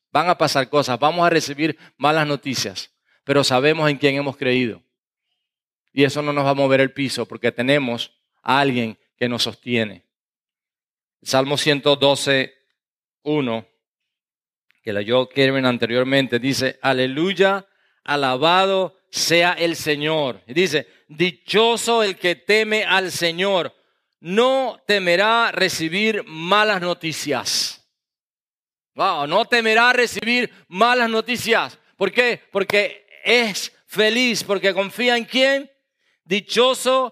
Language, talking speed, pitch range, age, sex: English, 120 wpm, 145-225 Hz, 40-59, male